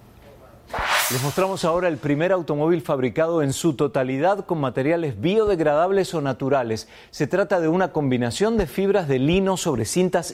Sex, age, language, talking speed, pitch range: male, 40-59, Spanish, 150 wpm, 130-170 Hz